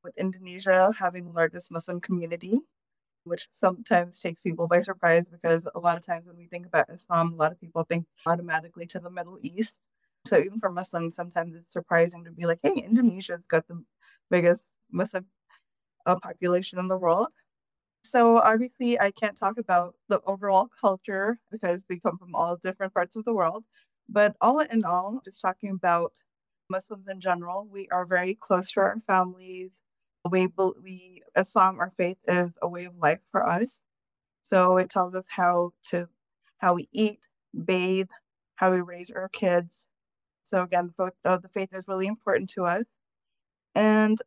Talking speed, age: 175 wpm, 20-39